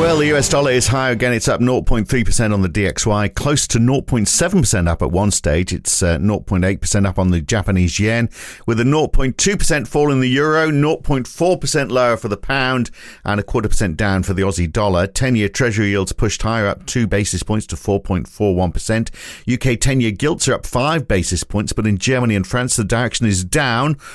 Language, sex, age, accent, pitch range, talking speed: English, male, 50-69, British, 95-125 Hz, 190 wpm